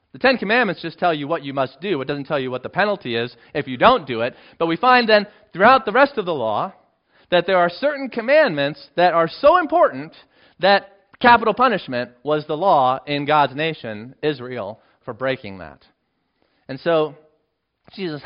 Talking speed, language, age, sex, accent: 190 wpm, English, 40-59, male, American